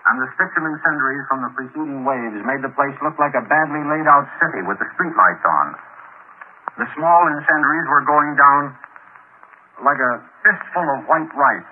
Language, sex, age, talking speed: English, male, 60-79, 180 wpm